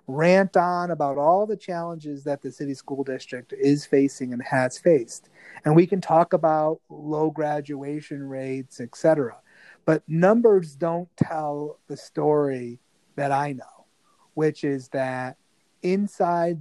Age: 40-59